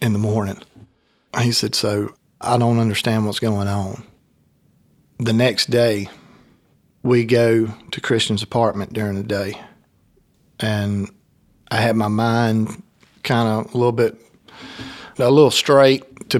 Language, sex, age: English, male, 40-59